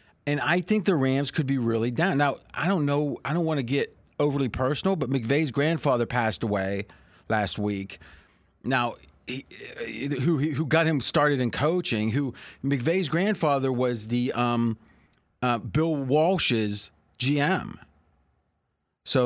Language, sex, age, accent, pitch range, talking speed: English, male, 30-49, American, 115-145 Hz, 145 wpm